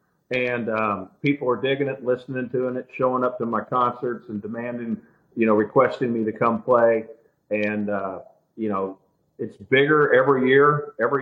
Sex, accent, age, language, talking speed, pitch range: male, American, 50-69, English, 170 wpm, 110-130 Hz